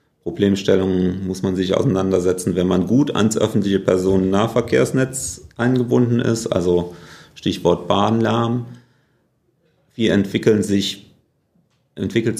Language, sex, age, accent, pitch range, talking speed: German, male, 40-59, German, 90-115 Hz, 95 wpm